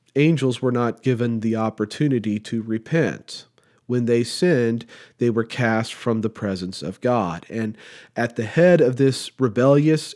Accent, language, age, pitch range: American, English, 40-59, 110-135 Hz